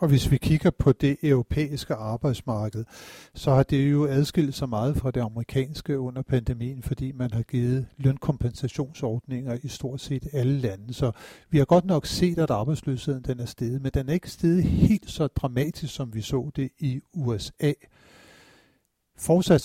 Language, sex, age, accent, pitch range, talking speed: Danish, male, 60-79, native, 125-150 Hz, 170 wpm